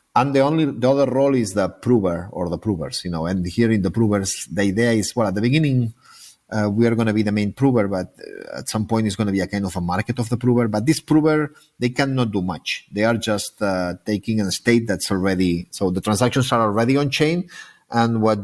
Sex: male